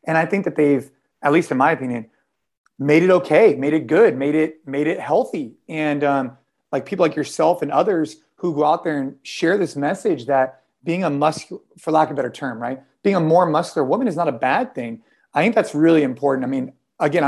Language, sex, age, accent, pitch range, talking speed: English, male, 30-49, American, 140-155 Hz, 230 wpm